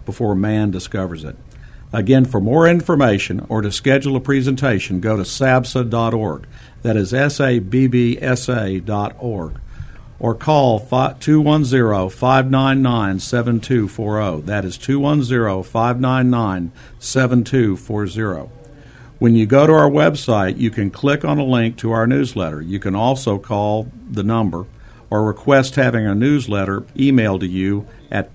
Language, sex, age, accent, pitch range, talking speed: English, male, 50-69, American, 100-130 Hz, 115 wpm